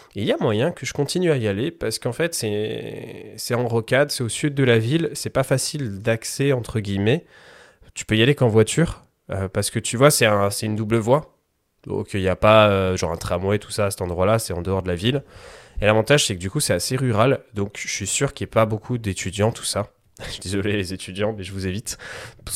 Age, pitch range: 20-39, 95-120 Hz